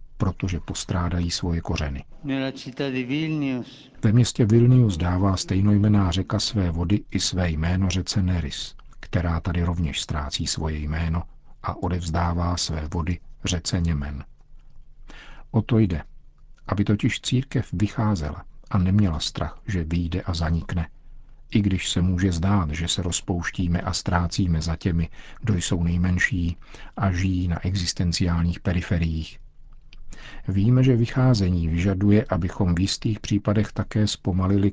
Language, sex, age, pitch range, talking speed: Czech, male, 50-69, 85-105 Hz, 125 wpm